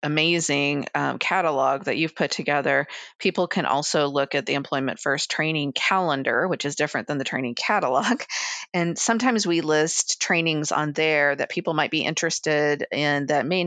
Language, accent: English, American